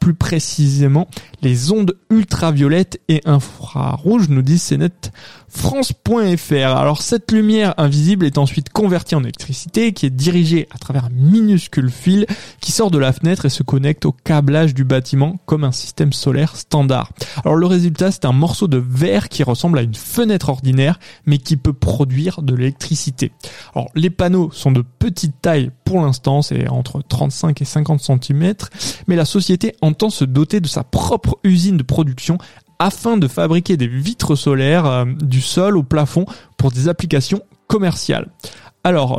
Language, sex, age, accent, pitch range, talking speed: French, male, 20-39, French, 135-175 Hz, 165 wpm